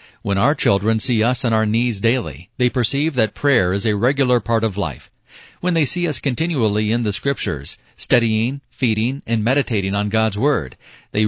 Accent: American